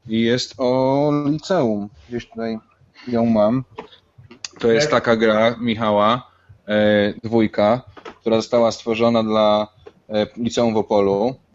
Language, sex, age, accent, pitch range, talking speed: Polish, male, 20-39, native, 95-115 Hz, 120 wpm